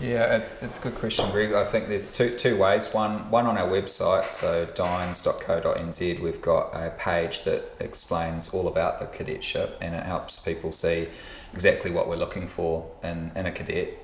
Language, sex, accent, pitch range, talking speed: English, male, Australian, 85-95 Hz, 190 wpm